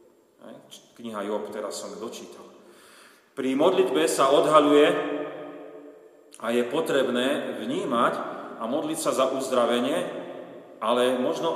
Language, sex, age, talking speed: Slovak, male, 40-59, 105 wpm